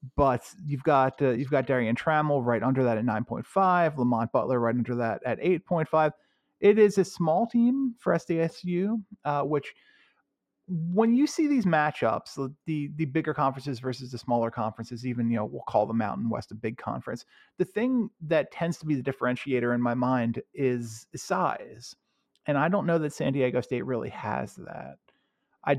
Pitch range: 125-185 Hz